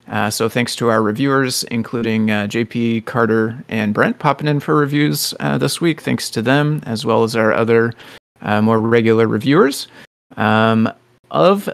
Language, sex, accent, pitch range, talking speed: English, male, American, 110-135 Hz, 170 wpm